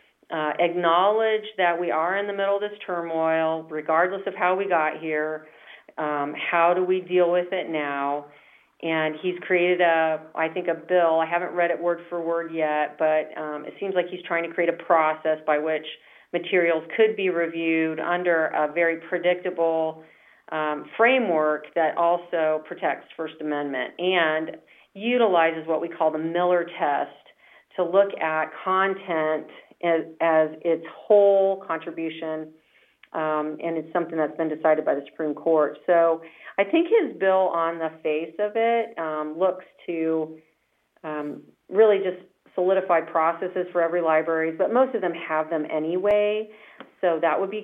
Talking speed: 160 wpm